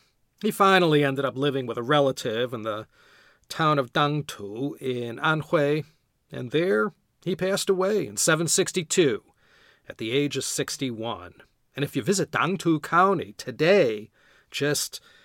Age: 40-59